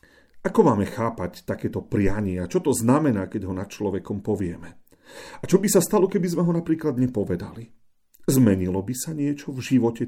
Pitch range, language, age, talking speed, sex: 105-145 Hz, Slovak, 40-59, 175 wpm, male